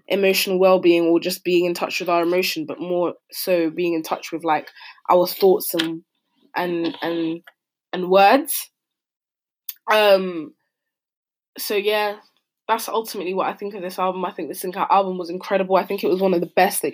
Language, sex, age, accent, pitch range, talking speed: English, female, 20-39, British, 175-210 Hz, 185 wpm